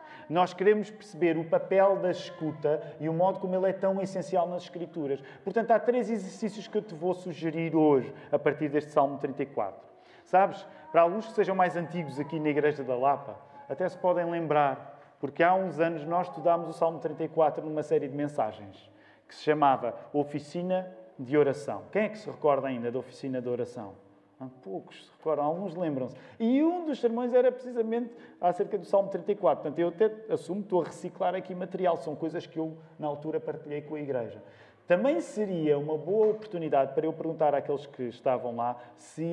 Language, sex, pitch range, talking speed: Portuguese, male, 145-195 Hz, 190 wpm